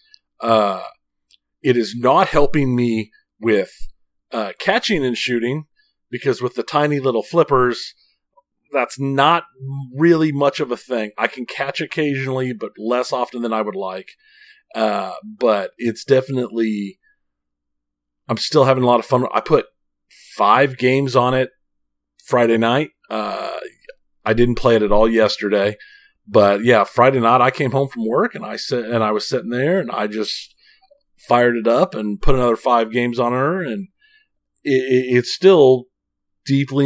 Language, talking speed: English, 160 wpm